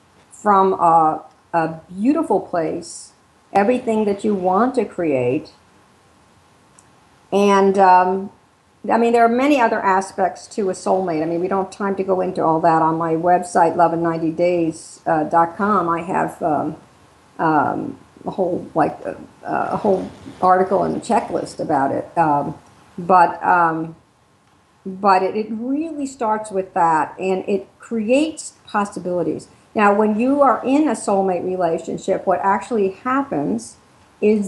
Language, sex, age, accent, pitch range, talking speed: English, female, 50-69, American, 180-220 Hz, 145 wpm